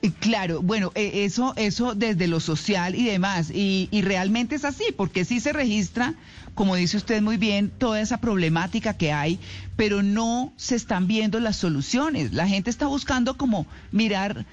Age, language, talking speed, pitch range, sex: 40-59, Spanish, 170 wpm, 170-225 Hz, male